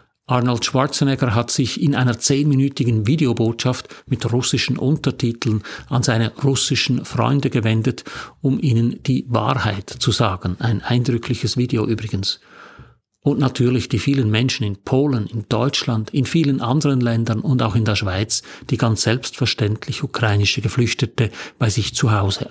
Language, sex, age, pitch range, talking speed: German, male, 50-69, 115-140 Hz, 140 wpm